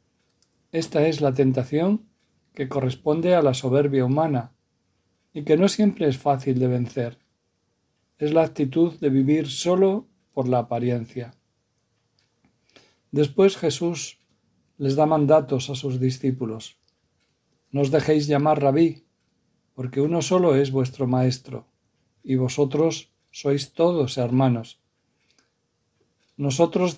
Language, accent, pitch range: Spanish, Spanish, 125-155 Hz